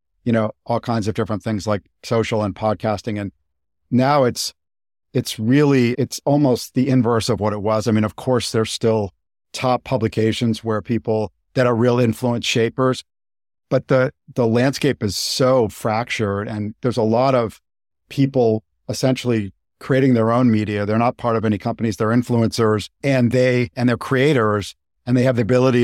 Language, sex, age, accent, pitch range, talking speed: English, male, 50-69, American, 105-125 Hz, 175 wpm